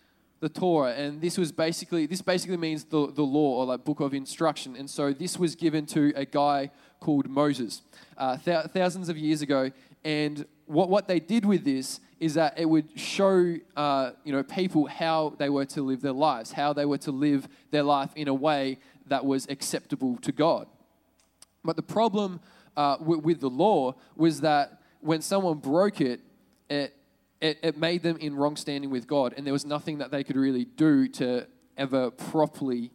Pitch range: 135-160 Hz